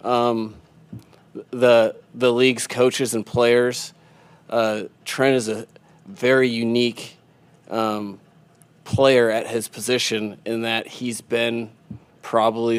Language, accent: English, American